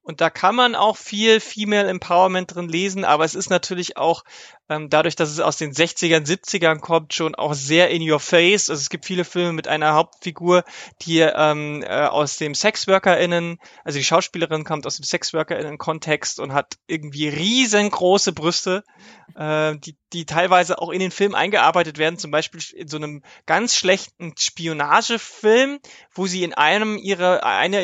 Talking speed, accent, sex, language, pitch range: 170 wpm, German, male, German, 155-185 Hz